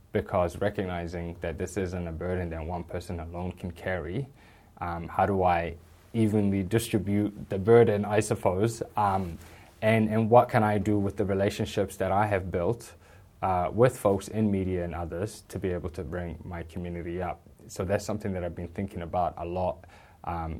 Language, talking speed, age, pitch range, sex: English, 185 wpm, 20-39, 90-105 Hz, male